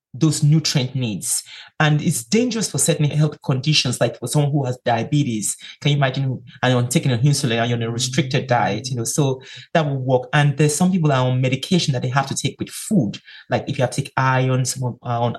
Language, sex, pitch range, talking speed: English, male, 130-155 Hz, 235 wpm